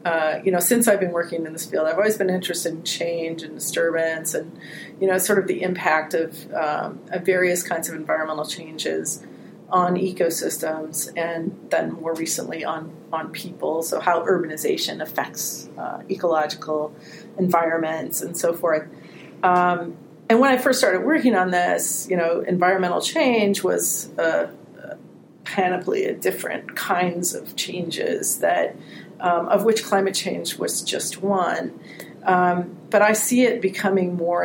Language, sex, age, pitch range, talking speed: English, female, 40-59, 165-195 Hz, 155 wpm